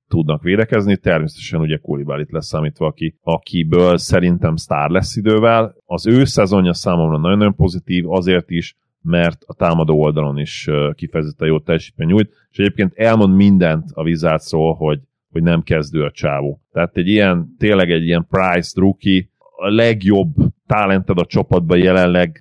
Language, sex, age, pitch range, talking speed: Hungarian, male, 30-49, 80-100 Hz, 155 wpm